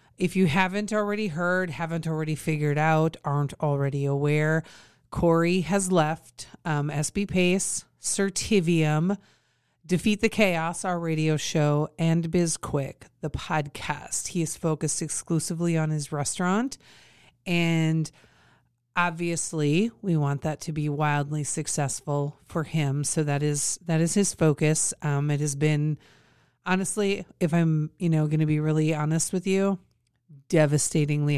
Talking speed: 140 wpm